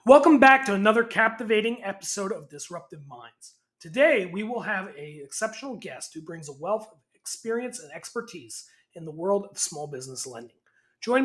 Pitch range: 160-225 Hz